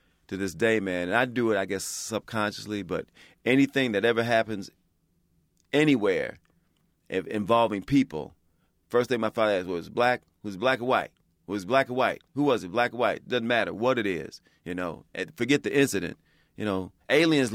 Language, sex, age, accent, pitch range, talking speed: English, male, 40-59, American, 85-115 Hz, 190 wpm